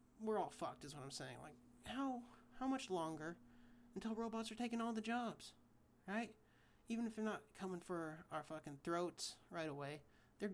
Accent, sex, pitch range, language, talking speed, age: American, male, 160-225 Hz, English, 180 wpm, 30-49